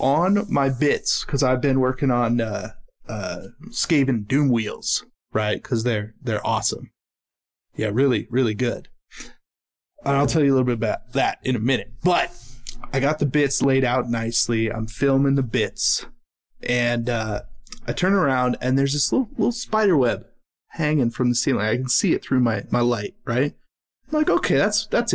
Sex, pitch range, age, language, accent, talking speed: male, 125-150 Hz, 20-39, English, American, 180 wpm